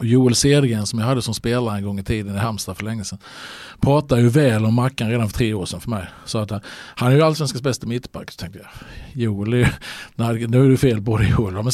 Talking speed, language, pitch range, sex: 270 wpm, Swedish, 120-150 Hz, male